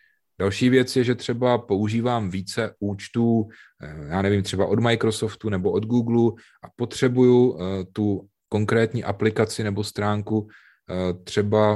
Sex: male